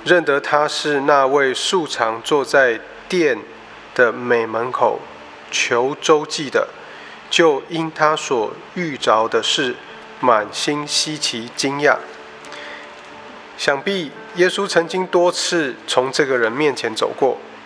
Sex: male